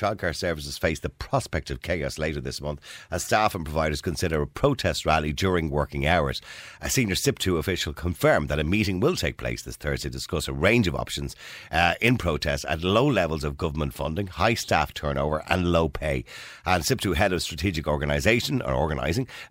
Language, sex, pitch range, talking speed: English, male, 75-95 Hz, 195 wpm